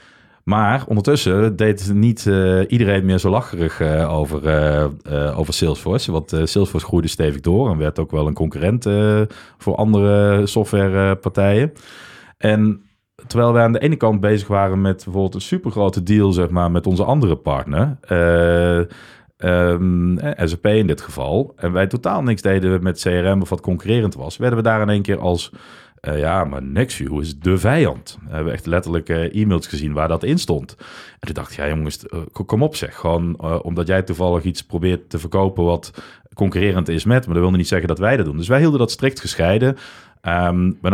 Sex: male